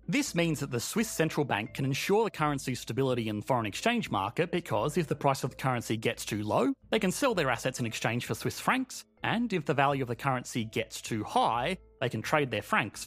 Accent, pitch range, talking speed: Australian, 115-160 Hz, 240 wpm